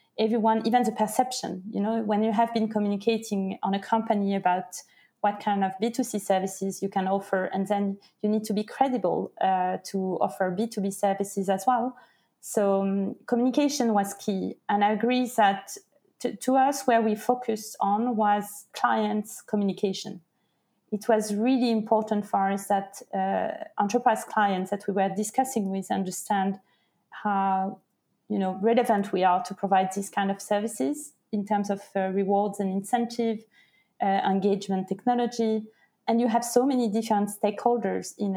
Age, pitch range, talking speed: 30-49, 195-230 Hz, 160 wpm